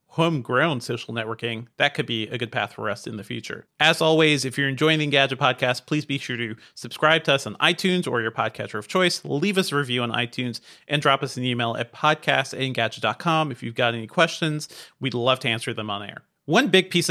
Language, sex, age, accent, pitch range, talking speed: English, male, 40-59, American, 125-165 Hz, 225 wpm